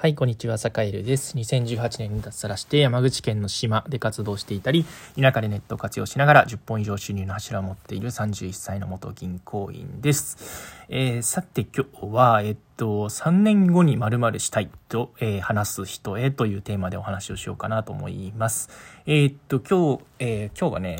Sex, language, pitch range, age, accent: male, Japanese, 105-135 Hz, 20-39, native